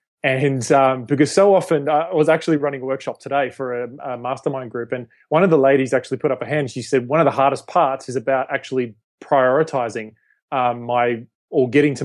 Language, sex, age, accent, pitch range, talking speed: English, male, 20-39, Australian, 130-150 Hz, 215 wpm